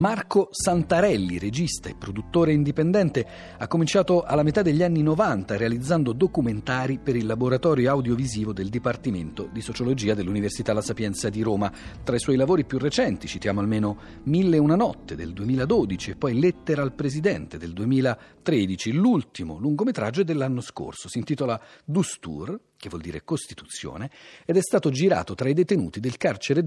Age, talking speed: 40-59, 155 wpm